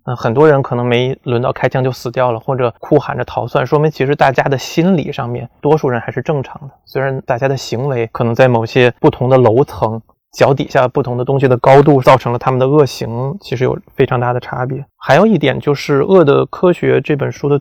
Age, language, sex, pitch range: 20-39, Chinese, male, 125-145 Hz